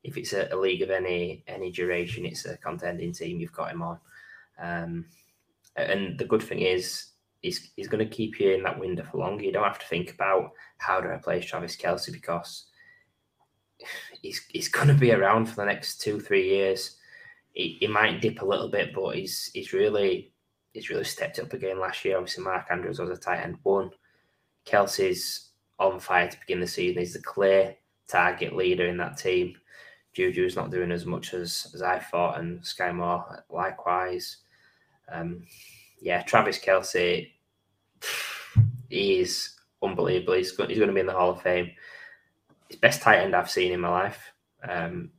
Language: English